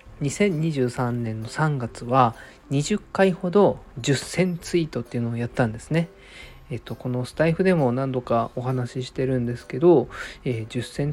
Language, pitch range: Japanese, 120-155 Hz